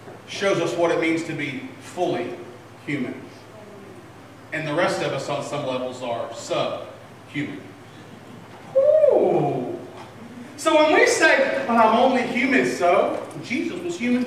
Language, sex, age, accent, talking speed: English, male, 40-59, American, 135 wpm